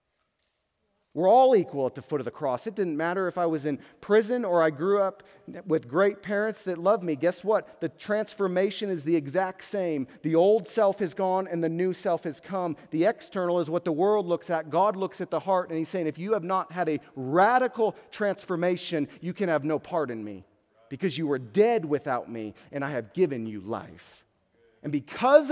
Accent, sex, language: American, male, English